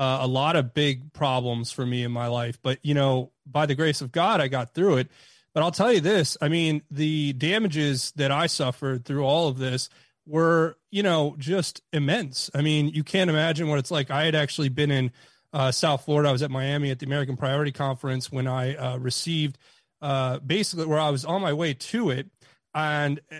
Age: 30-49